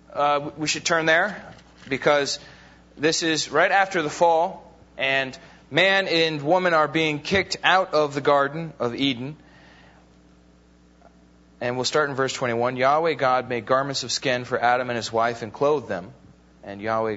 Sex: male